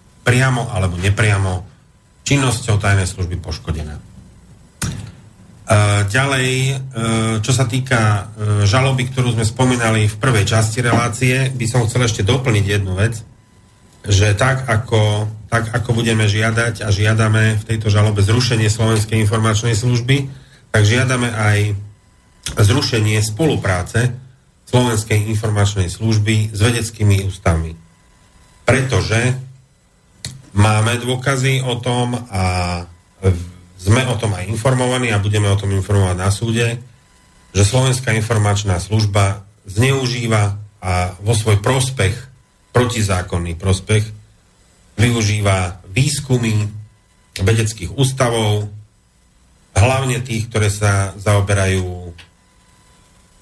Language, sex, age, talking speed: Slovak, male, 40-59, 100 wpm